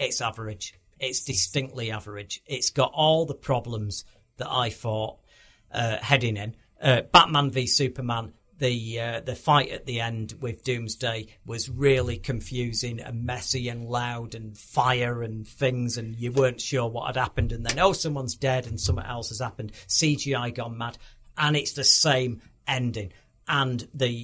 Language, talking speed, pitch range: English, 165 wpm, 115-135 Hz